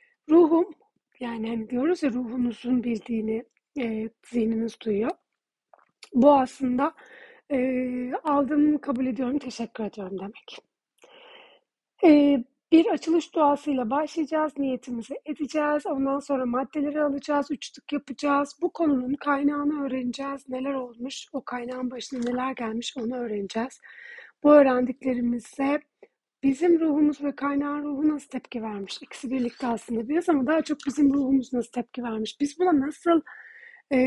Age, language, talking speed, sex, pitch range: 30-49, Turkish, 125 wpm, female, 250-305 Hz